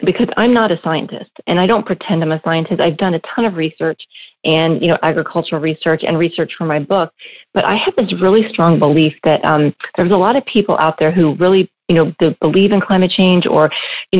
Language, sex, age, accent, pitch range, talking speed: English, female, 40-59, American, 160-200 Hz, 230 wpm